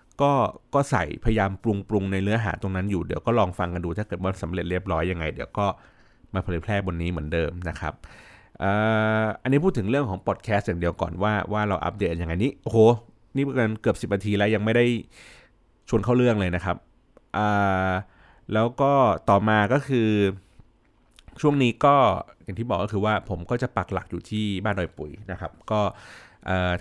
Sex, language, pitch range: male, Thai, 90-120 Hz